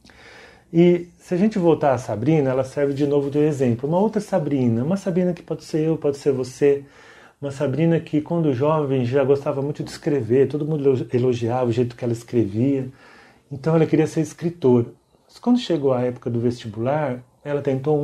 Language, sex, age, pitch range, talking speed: Portuguese, male, 40-59, 130-155 Hz, 195 wpm